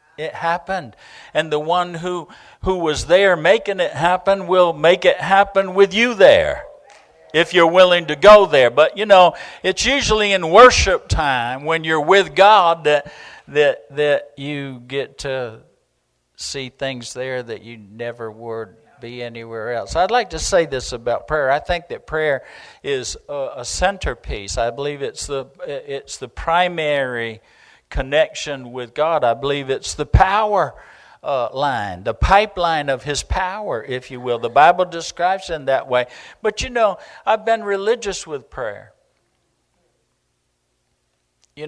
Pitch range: 135-195 Hz